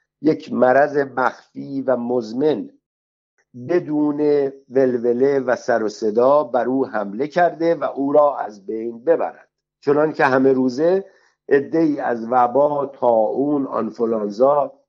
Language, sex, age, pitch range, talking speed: Persian, male, 60-79, 120-155 Hz, 115 wpm